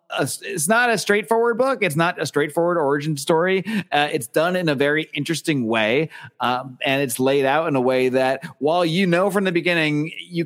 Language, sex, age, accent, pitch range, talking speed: English, male, 30-49, American, 130-175 Hz, 200 wpm